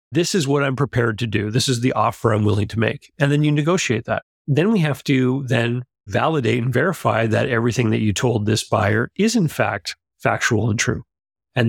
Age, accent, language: 40-59, American, English